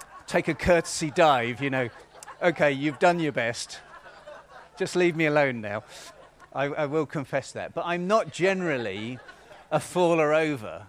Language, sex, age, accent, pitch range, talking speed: English, male, 40-59, British, 115-155 Hz, 155 wpm